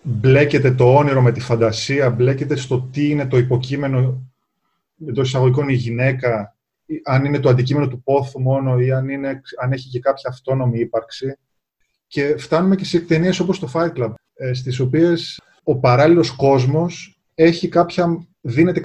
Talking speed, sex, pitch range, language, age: 150 wpm, male, 125-165 Hz, Greek, 20-39